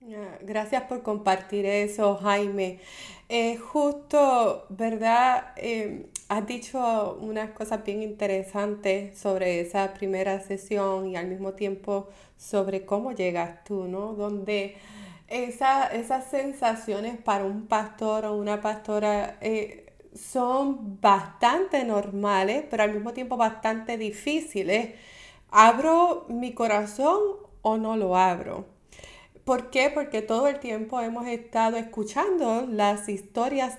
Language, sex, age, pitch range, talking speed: English, female, 30-49, 205-250 Hz, 115 wpm